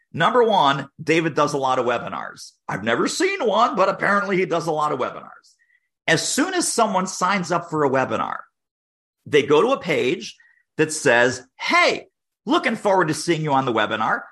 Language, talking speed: English, 190 wpm